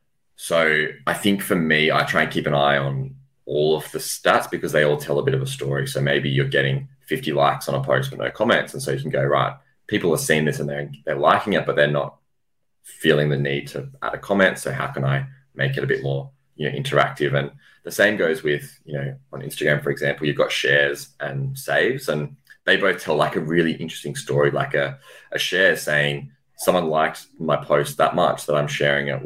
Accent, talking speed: Australian, 235 wpm